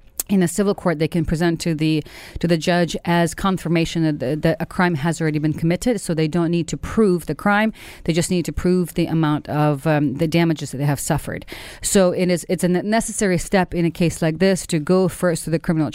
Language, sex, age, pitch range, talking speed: English, female, 40-59, 155-180 Hz, 240 wpm